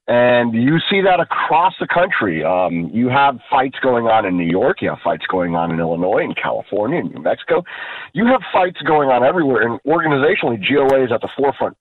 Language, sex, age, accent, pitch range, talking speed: English, male, 40-59, American, 130-195 Hz, 210 wpm